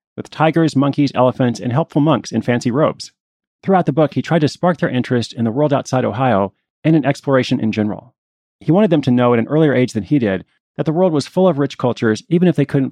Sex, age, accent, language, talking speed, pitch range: male, 30-49, American, English, 245 wpm, 115-150 Hz